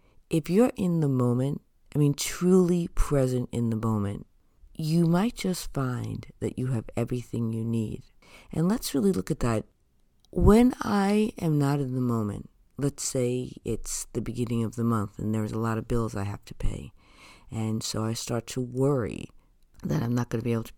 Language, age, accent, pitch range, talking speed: English, 50-69, American, 115-150 Hz, 195 wpm